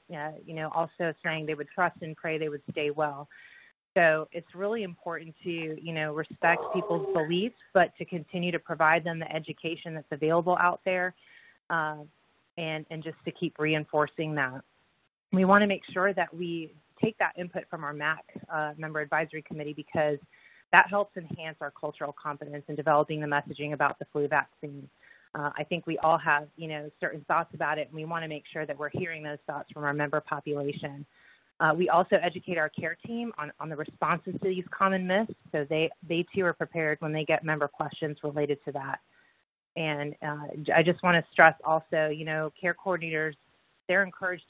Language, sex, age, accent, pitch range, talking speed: English, female, 30-49, American, 150-175 Hz, 195 wpm